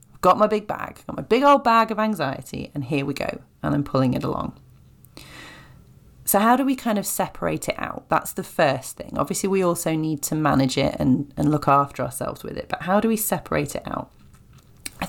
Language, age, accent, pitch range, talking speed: English, 30-49, British, 145-210 Hz, 220 wpm